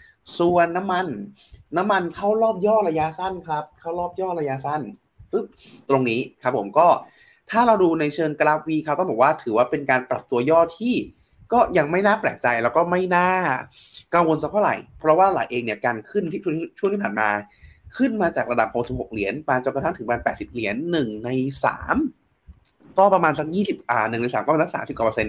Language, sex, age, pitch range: Thai, male, 20-39, 125-180 Hz